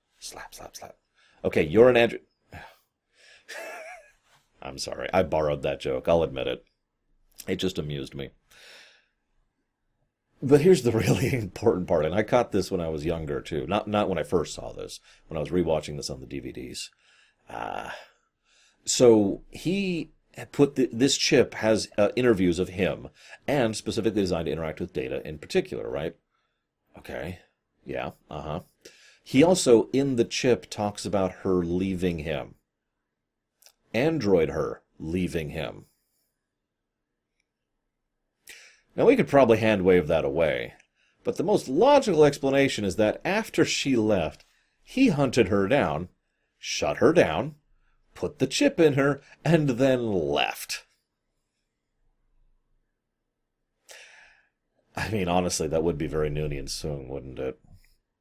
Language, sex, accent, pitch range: English, male, American, 90-135 Hz